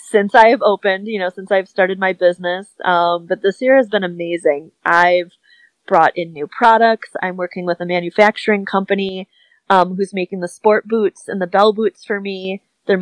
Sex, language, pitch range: female, English, 170-195 Hz